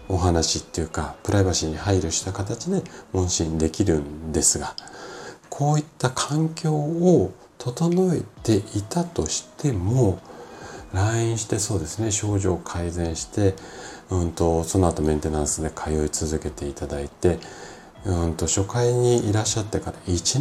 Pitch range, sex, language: 80-110 Hz, male, Japanese